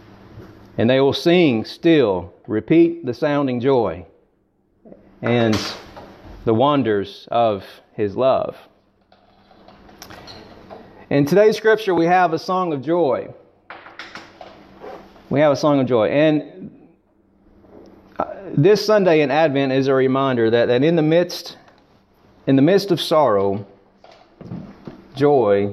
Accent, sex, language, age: American, male, Bengali, 40-59